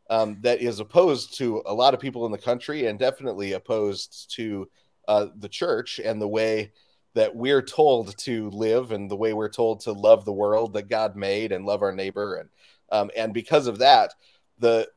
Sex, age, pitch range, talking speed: male, 30-49, 110-135 Hz, 200 wpm